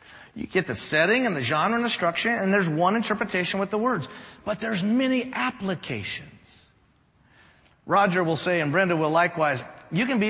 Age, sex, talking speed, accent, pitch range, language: 40-59, male, 180 wpm, American, 165-225 Hz, English